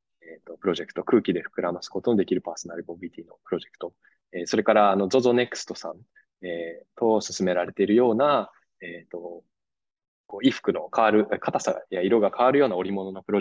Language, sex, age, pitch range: Japanese, male, 20-39, 90-125 Hz